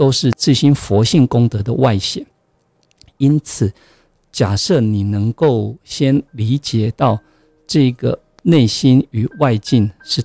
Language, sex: Chinese, male